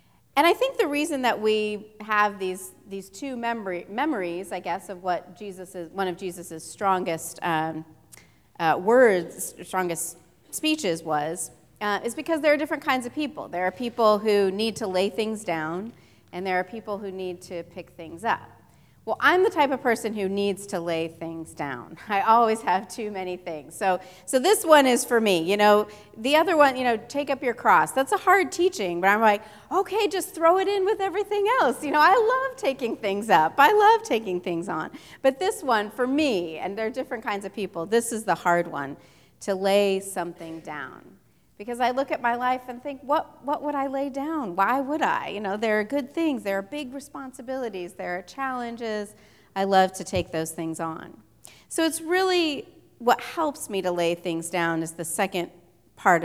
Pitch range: 175-270 Hz